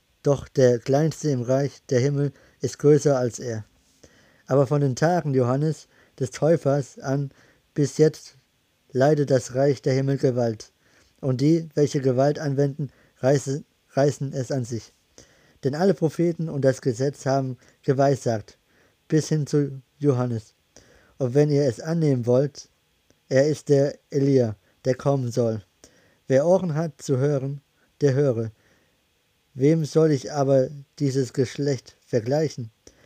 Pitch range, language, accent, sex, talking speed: 130-145 Hz, German, German, male, 135 wpm